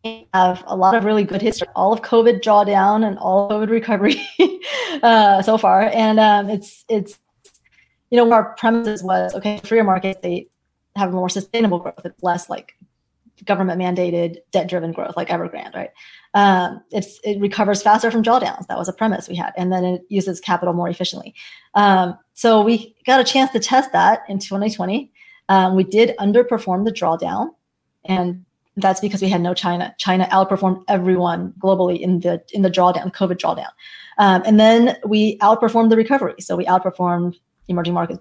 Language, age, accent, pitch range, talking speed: English, 30-49, American, 185-220 Hz, 180 wpm